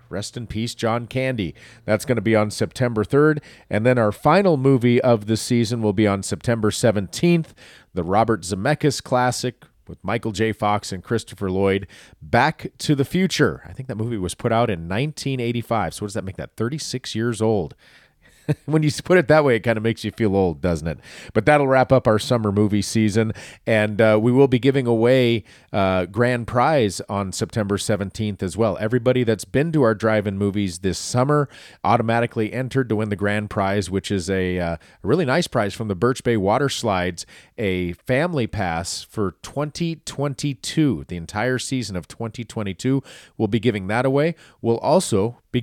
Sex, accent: male, American